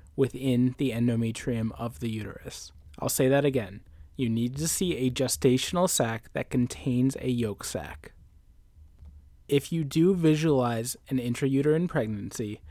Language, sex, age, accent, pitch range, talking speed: English, male, 20-39, American, 120-140 Hz, 135 wpm